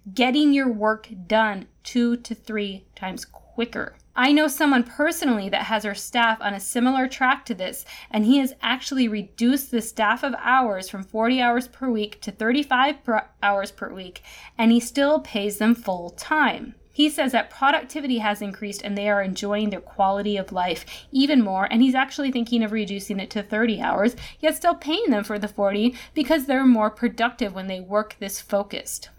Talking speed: 185 wpm